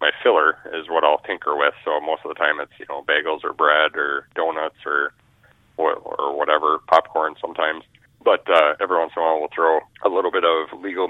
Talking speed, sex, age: 215 wpm, male, 30-49